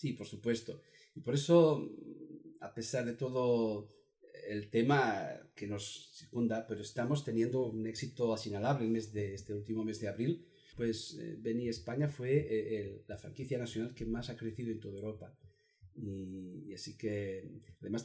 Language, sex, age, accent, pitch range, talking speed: Spanish, male, 40-59, Spanish, 110-150 Hz, 150 wpm